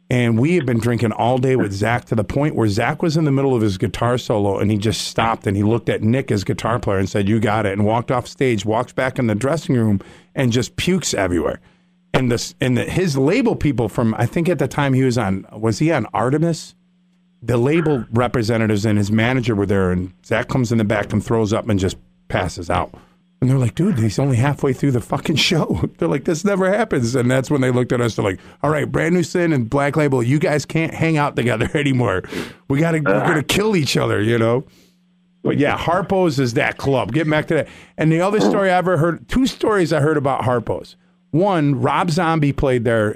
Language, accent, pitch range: English, American, 115-155 Hz